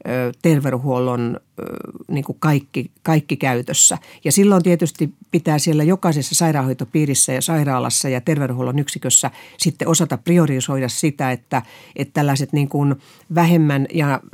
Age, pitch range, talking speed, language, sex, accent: 50-69, 130-160 Hz, 115 wpm, Finnish, female, native